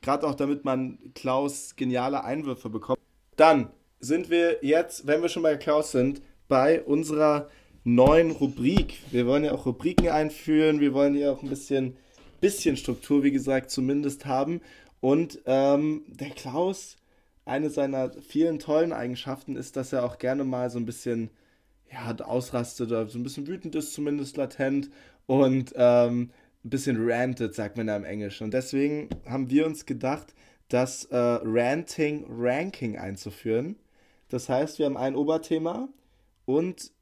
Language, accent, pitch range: German, German, 125-150 Hz